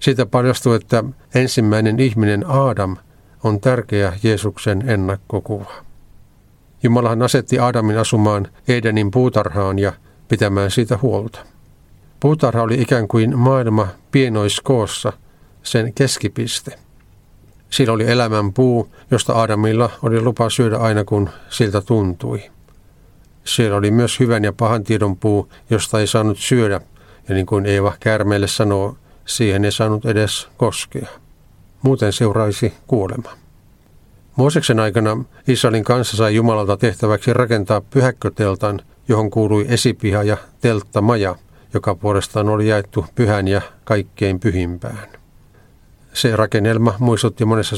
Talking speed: 115 wpm